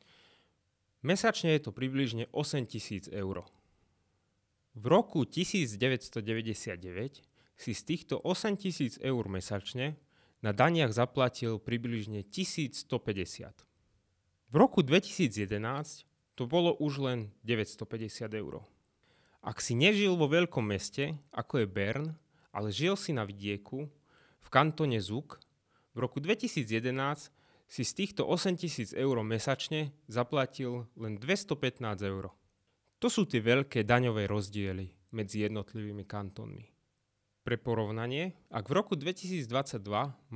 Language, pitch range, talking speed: Slovak, 105-150 Hz, 110 wpm